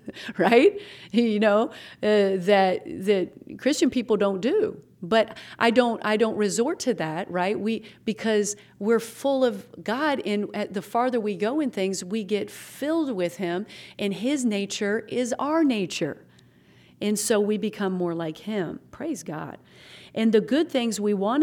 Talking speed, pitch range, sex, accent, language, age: 160 wpm, 185-235 Hz, female, American, English, 40-59